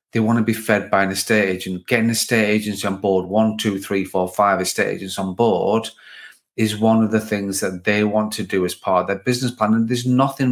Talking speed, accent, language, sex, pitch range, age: 235 wpm, British, English, male, 95-110 Hz, 30-49